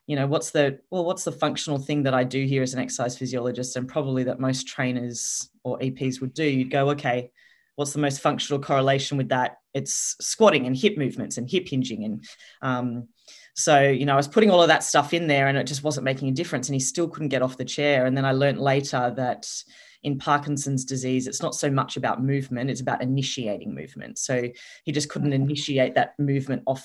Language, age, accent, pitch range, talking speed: English, 20-39, Australian, 125-145 Hz, 225 wpm